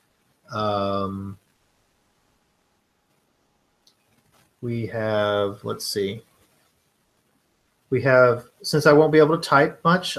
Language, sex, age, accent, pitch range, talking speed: English, male, 30-49, American, 110-140 Hz, 90 wpm